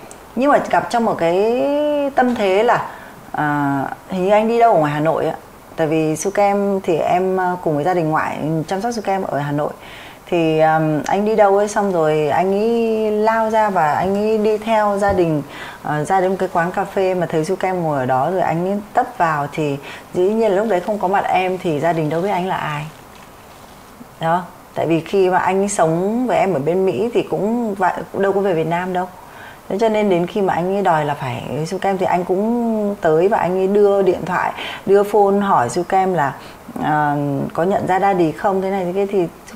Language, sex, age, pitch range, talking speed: Vietnamese, female, 20-39, 165-210 Hz, 225 wpm